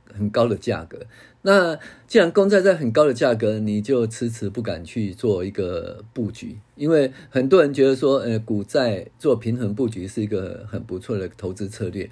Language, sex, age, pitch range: Chinese, male, 50-69, 105-140 Hz